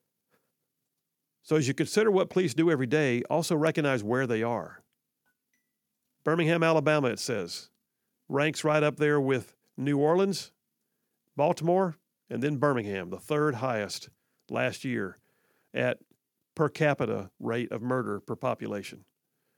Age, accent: 50-69, American